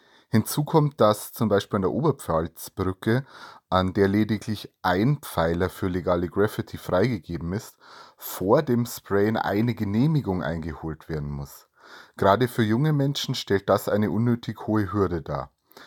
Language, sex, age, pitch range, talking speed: German, male, 30-49, 95-120 Hz, 140 wpm